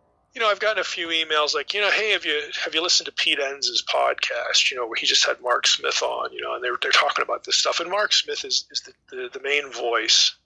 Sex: male